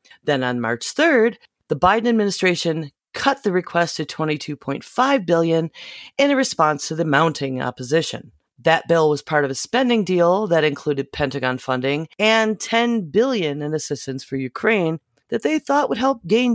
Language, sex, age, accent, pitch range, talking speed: English, female, 40-59, American, 145-210 Hz, 165 wpm